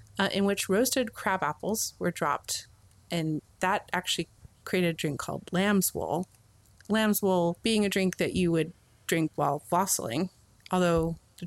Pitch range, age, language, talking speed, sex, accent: 160-195 Hz, 30-49, English, 155 wpm, female, American